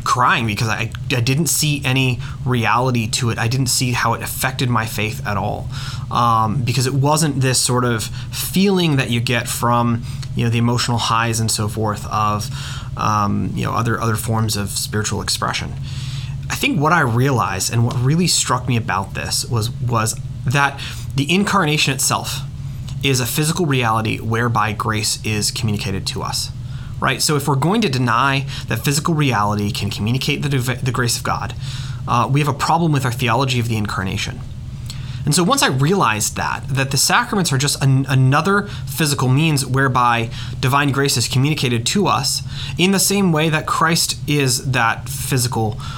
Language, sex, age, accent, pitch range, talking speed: English, male, 30-49, American, 115-135 Hz, 180 wpm